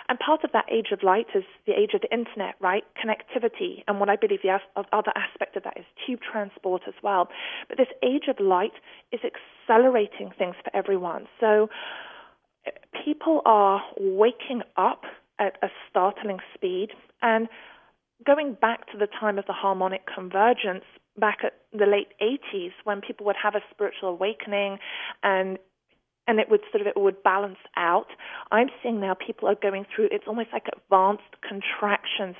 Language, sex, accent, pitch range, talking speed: English, female, British, 195-240 Hz, 170 wpm